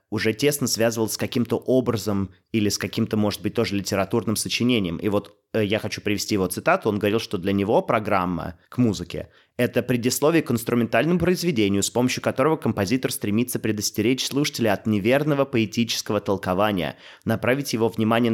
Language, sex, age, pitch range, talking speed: Russian, male, 20-39, 100-125 Hz, 160 wpm